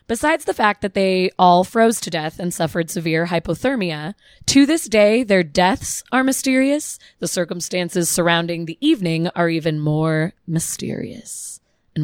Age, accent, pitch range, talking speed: 20-39, American, 165-215 Hz, 150 wpm